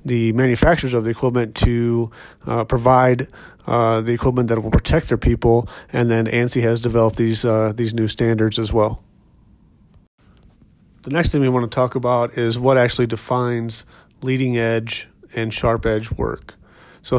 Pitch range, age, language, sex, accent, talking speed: 115-125 Hz, 30-49, English, male, American, 155 wpm